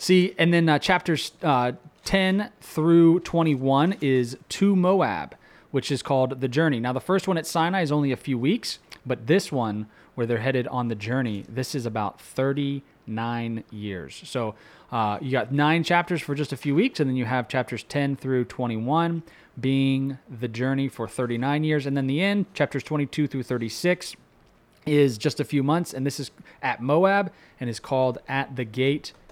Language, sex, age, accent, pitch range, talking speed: English, male, 20-39, American, 125-160 Hz, 190 wpm